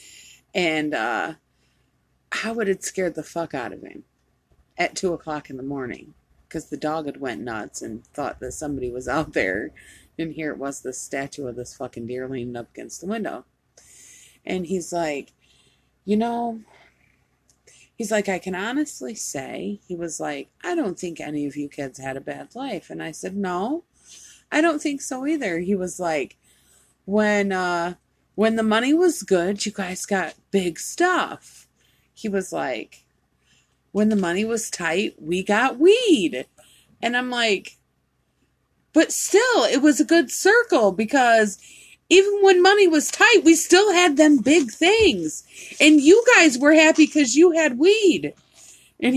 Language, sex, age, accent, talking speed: English, female, 30-49, American, 170 wpm